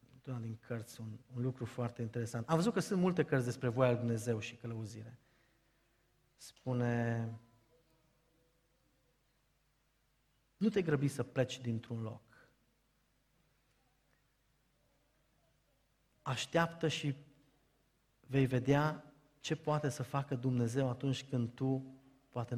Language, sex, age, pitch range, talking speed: Romanian, male, 30-49, 125-150 Hz, 105 wpm